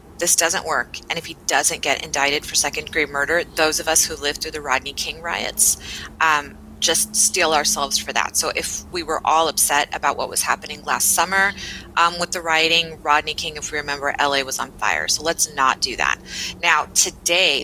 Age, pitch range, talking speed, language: 30-49, 150-190 Hz, 210 wpm, English